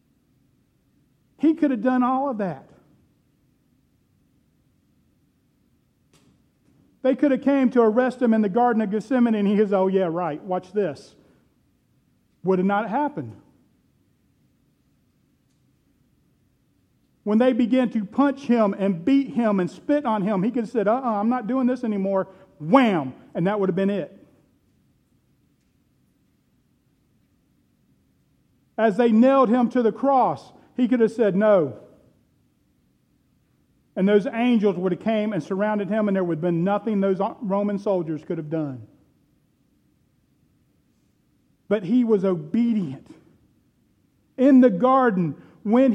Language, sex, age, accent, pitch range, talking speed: English, male, 50-69, American, 200-260 Hz, 135 wpm